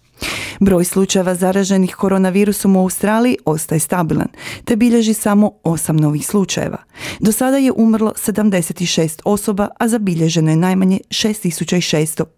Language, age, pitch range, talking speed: Croatian, 30-49, 160-205 Hz, 120 wpm